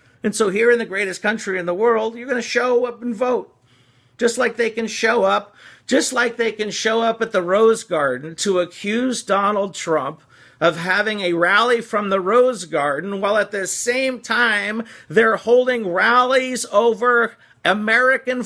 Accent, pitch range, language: American, 180-230 Hz, English